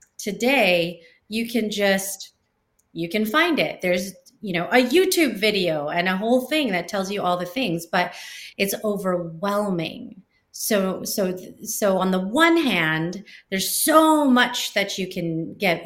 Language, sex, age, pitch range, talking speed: English, female, 30-49, 180-230 Hz, 155 wpm